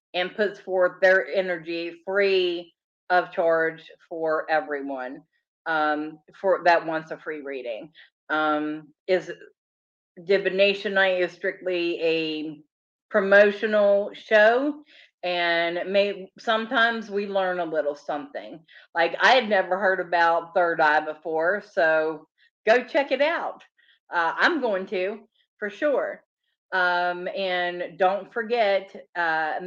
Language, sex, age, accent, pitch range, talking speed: English, female, 40-59, American, 175-210 Hz, 120 wpm